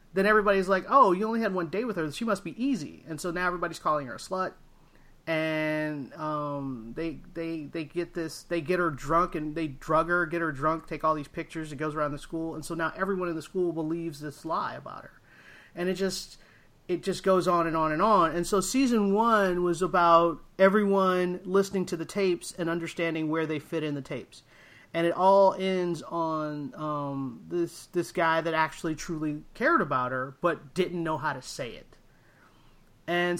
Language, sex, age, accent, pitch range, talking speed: English, male, 30-49, American, 150-180 Hz, 205 wpm